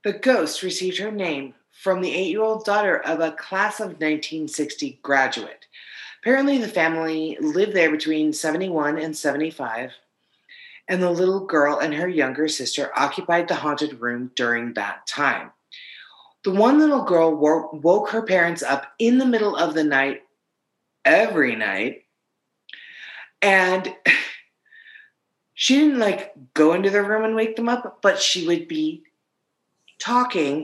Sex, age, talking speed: female, 30-49, 140 wpm